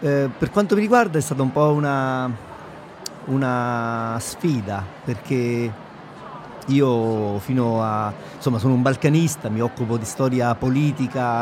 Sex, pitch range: male, 115-145 Hz